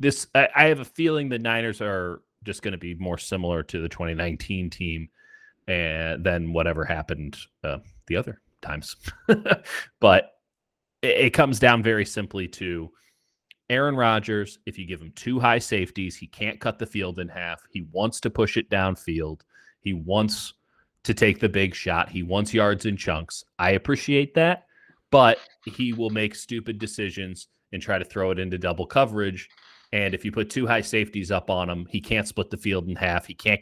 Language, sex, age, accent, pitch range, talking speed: English, male, 30-49, American, 90-115 Hz, 185 wpm